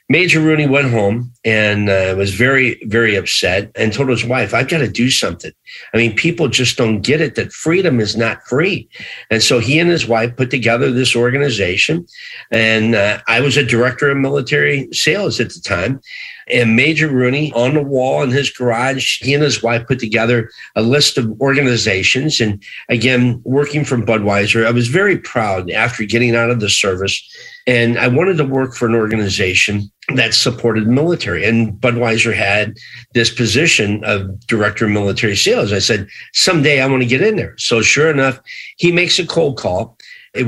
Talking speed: 185 wpm